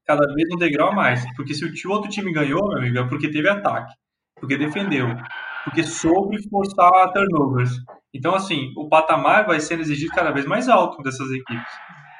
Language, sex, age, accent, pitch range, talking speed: Portuguese, male, 20-39, Brazilian, 135-170 Hz, 180 wpm